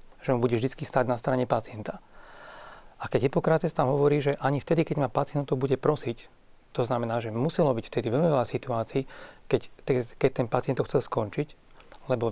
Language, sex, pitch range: Slovak, male, 120-145 Hz